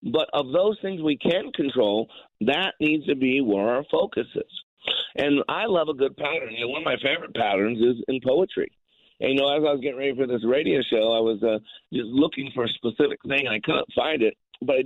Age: 50-69